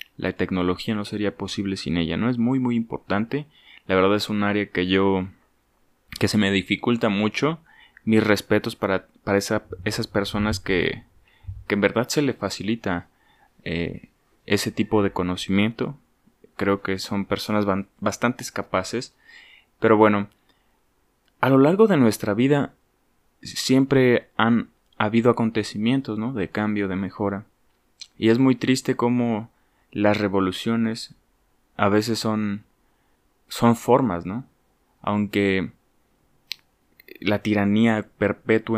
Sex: male